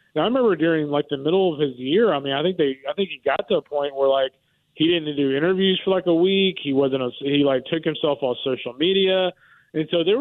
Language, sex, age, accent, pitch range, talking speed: English, male, 30-49, American, 140-165 Hz, 265 wpm